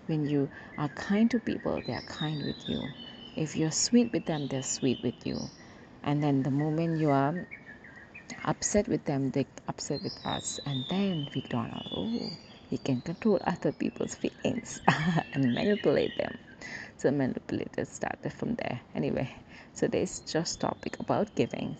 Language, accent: English, Indian